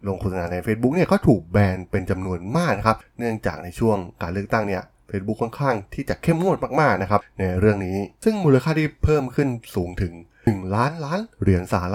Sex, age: male, 20-39